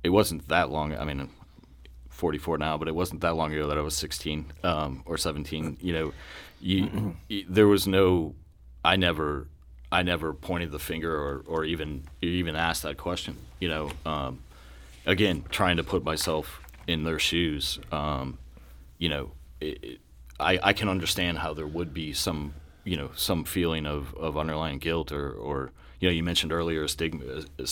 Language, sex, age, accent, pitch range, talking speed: English, male, 30-49, American, 75-85 Hz, 180 wpm